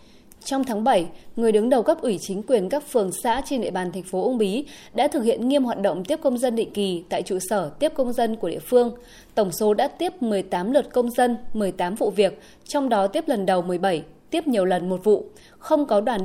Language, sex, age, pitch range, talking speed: Vietnamese, female, 20-39, 200-265 Hz, 240 wpm